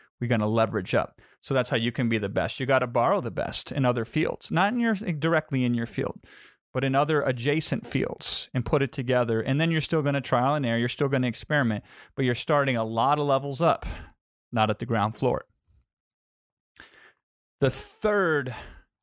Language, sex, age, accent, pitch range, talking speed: English, male, 30-49, American, 120-145 Hz, 210 wpm